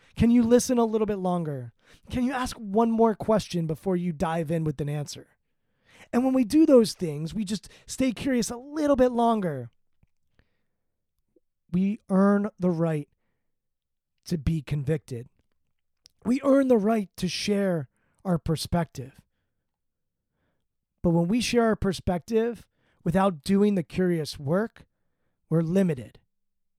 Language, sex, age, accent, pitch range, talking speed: English, male, 30-49, American, 160-215 Hz, 140 wpm